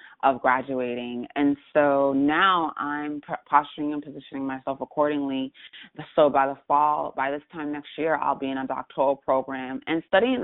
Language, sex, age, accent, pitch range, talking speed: English, female, 30-49, American, 140-160 Hz, 160 wpm